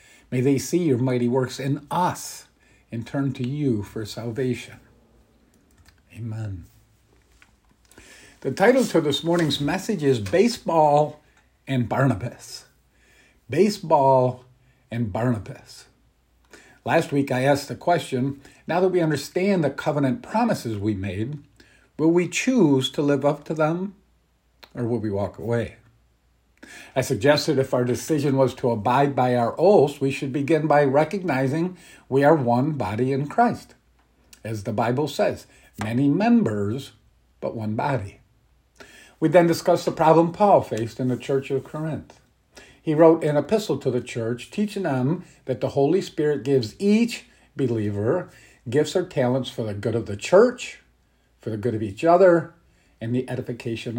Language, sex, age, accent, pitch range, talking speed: English, male, 50-69, American, 120-155 Hz, 150 wpm